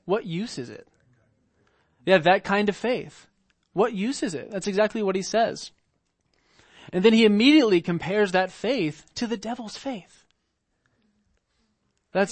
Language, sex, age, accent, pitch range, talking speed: English, male, 20-39, American, 165-225 Hz, 150 wpm